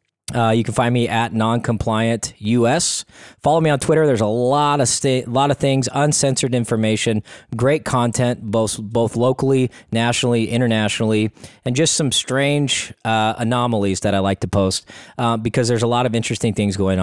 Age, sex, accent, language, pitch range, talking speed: 20-39, male, American, English, 100-130 Hz, 175 wpm